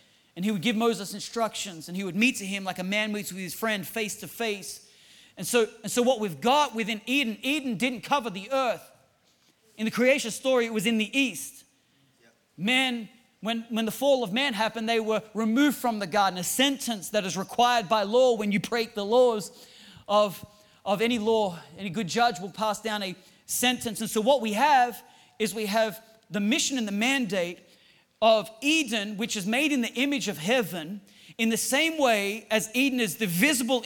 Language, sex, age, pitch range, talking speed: English, male, 30-49, 205-250 Hz, 205 wpm